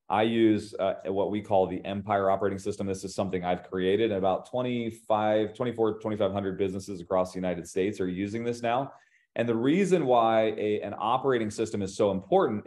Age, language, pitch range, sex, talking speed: 30-49, English, 95-115 Hz, male, 190 wpm